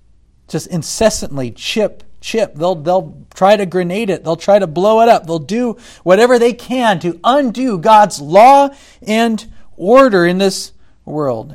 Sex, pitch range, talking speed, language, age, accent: male, 175-240 Hz, 155 wpm, English, 40-59, American